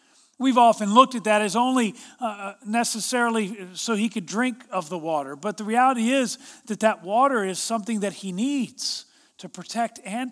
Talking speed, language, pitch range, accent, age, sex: 180 wpm, English, 190-245 Hz, American, 40-59, male